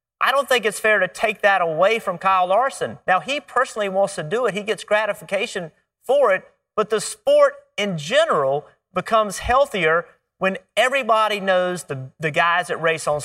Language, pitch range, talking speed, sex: English, 180-235 Hz, 180 wpm, male